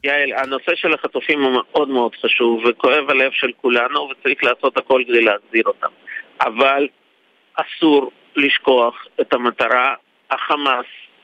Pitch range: 130-175 Hz